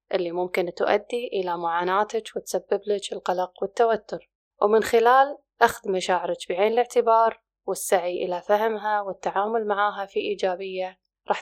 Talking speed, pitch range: 120 wpm, 185-230 Hz